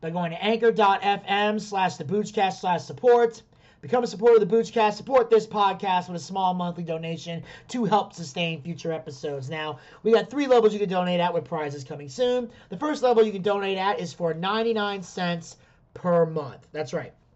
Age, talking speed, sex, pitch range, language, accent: 30-49, 190 wpm, male, 165-215 Hz, English, American